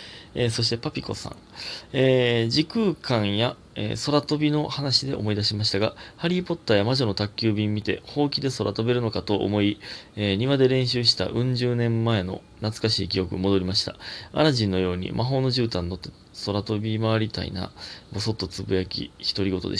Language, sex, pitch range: Japanese, male, 100-140 Hz